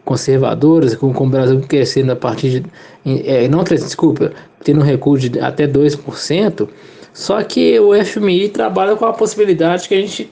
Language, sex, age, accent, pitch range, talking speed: Portuguese, male, 20-39, Brazilian, 145-190 Hz, 165 wpm